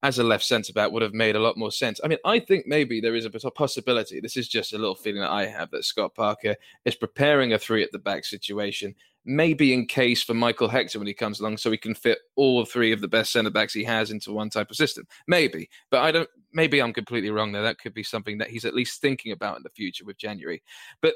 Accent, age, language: British, 20-39, English